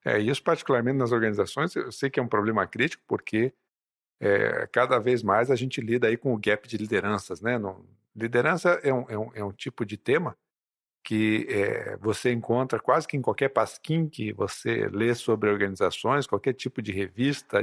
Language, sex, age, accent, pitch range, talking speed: Portuguese, male, 50-69, Brazilian, 105-140 Hz, 190 wpm